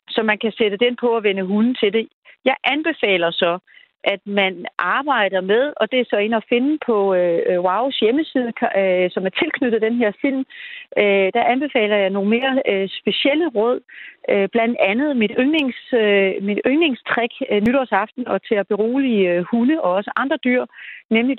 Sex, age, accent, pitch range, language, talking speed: female, 40-59, native, 200-265 Hz, Danish, 185 wpm